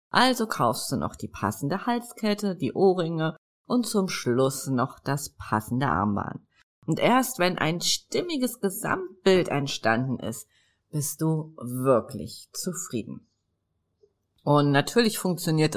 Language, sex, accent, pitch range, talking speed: German, female, German, 135-195 Hz, 120 wpm